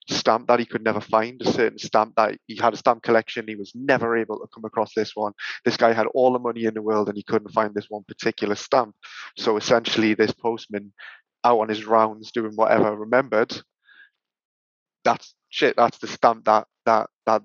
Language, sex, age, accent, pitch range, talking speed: English, male, 20-39, British, 105-120 Hz, 205 wpm